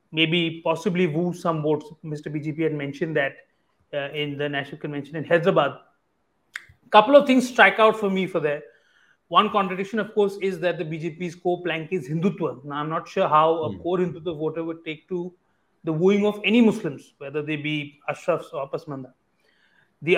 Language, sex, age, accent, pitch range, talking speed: English, male, 30-49, Indian, 150-180 Hz, 185 wpm